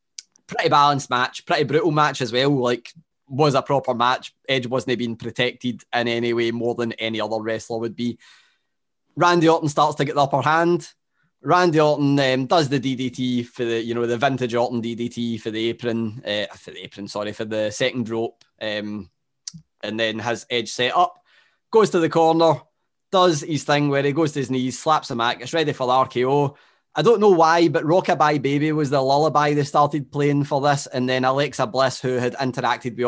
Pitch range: 125-160 Hz